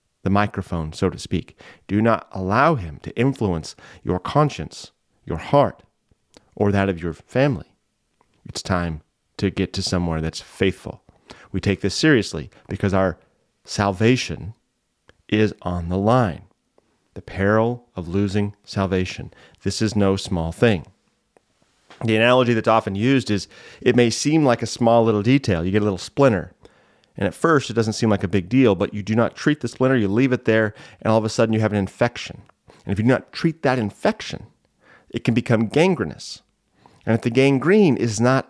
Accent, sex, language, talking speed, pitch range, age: American, male, English, 180 wpm, 100-125 Hz, 30-49